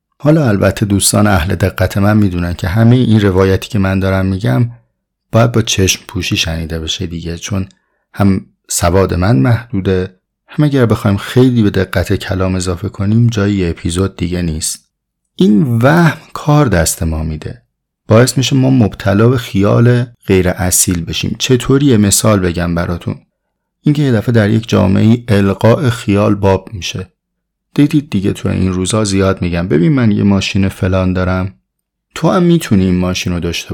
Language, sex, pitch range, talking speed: Persian, male, 90-120 Hz, 160 wpm